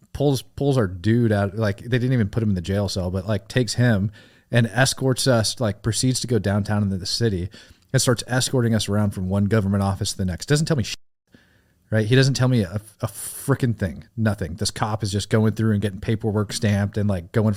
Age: 30-49